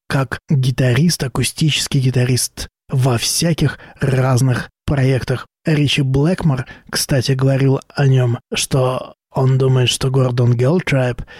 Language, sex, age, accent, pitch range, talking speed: Russian, male, 20-39, native, 125-160 Hz, 105 wpm